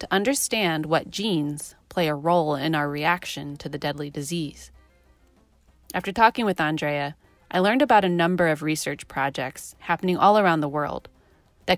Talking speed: 165 wpm